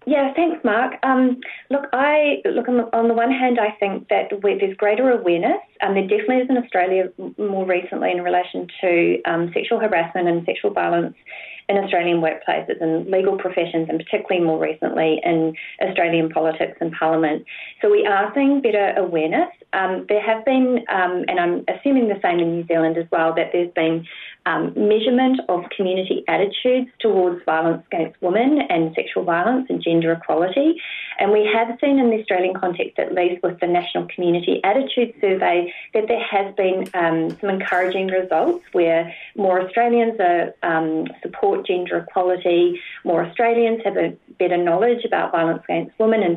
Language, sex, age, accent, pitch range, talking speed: English, female, 30-49, Australian, 170-235 Hz, 170 wpm